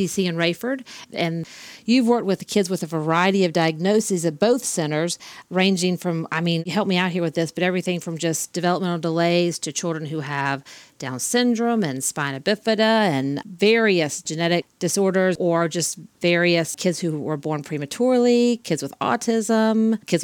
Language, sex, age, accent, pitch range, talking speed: English, female, 40-59, American, 165-210 Hz, 165 wpm